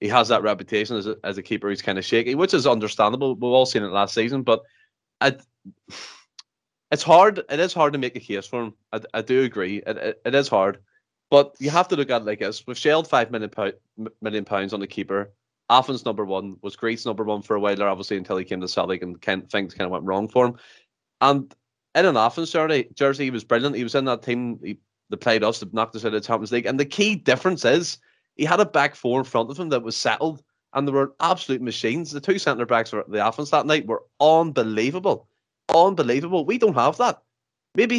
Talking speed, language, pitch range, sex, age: 235 wpm, English, 110-150 Hz, male, 20-39